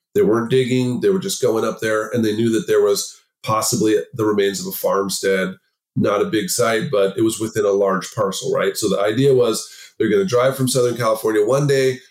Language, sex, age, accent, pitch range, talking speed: English, male, 30-49, American, 110-170 Hz, 225 wpm